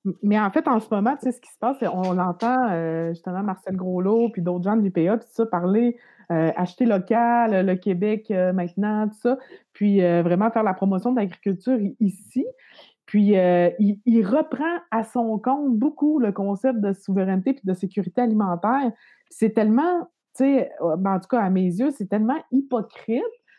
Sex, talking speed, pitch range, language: female, 190 wpm, 195-260 Hz, French